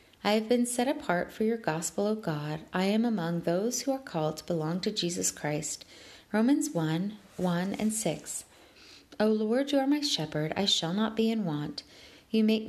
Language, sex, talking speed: English, female, 195 wpm